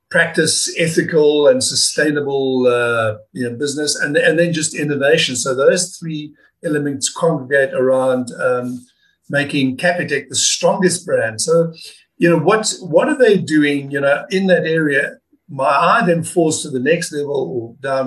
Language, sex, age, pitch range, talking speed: English, male, 50-69, 135-180 Hz, 150 wpm